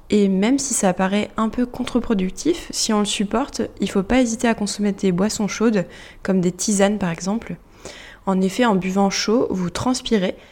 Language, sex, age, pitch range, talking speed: French, female, 20-39, 190-230 Hz, 195 wpm